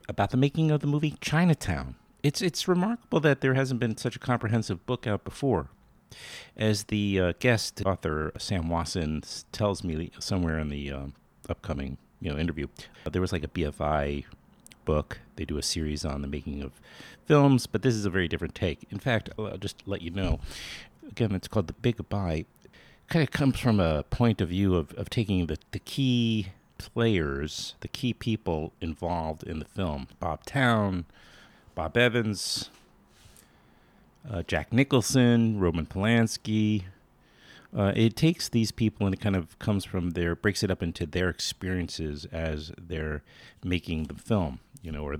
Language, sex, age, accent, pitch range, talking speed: English, male, 50-69, American, 80-110 Hz, 175 wpm